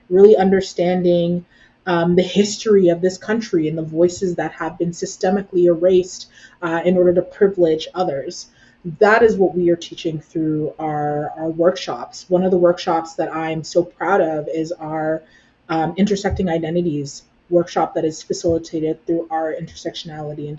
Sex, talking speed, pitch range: female, 155 wpm, 160-195 Hz